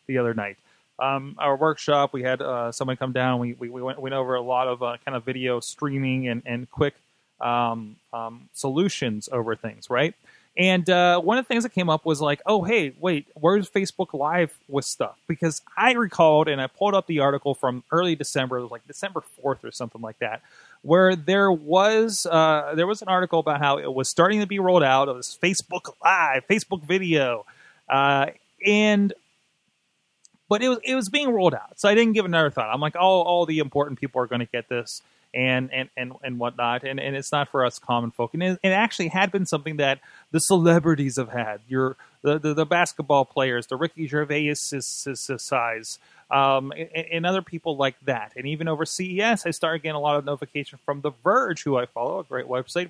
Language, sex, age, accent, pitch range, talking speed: English, male, 20-39, American, 130-180 Hz, 215 wpm